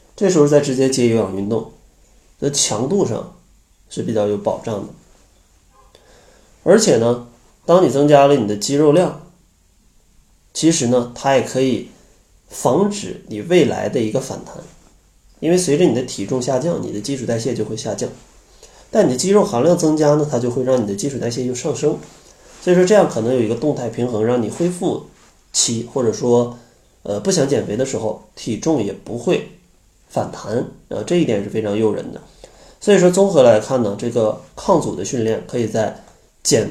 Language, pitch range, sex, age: Chinese, 110-150 Hz, male, 20-39